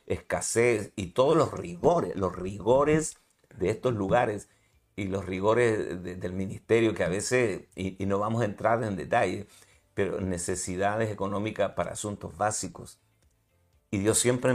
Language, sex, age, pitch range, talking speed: Spanish, male, 50-69, 95-115 Hz, 155 wpm